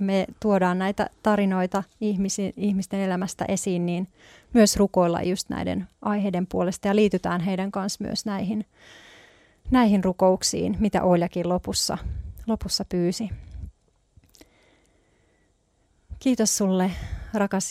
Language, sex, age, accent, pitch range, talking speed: Finnish, female, 30-49, native, 180-205 Hz, 105 wpm